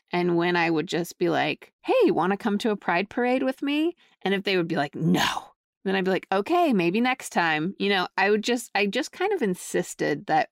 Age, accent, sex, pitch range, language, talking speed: 30-49, American, female, 175-220 Hz, English, 245 wpm